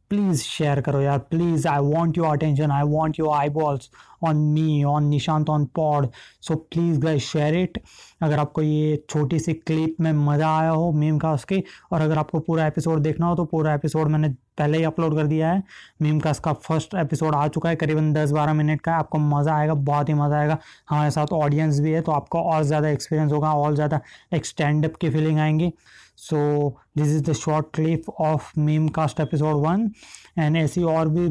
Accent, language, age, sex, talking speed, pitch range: native, Hindi, 20-39, male, 205 wpm, 150-160 Hz